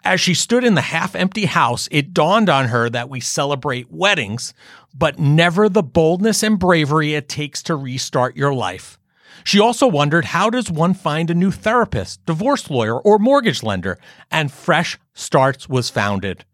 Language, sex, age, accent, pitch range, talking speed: English, male, 40-59, American, 130-195 Hz, 170 wpm